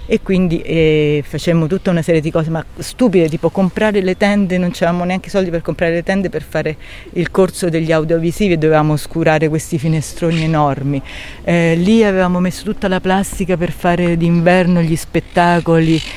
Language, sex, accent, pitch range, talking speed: Italian, female, native, 150-180 Hz, 175 wpm